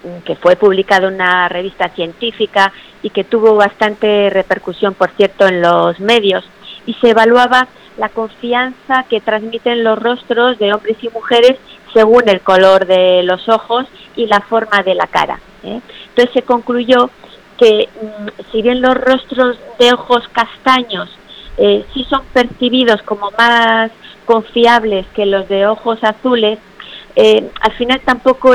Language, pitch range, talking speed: Spanish, 200-235 Hz, 145 wpm